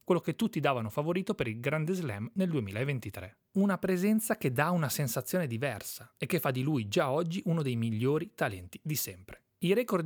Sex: male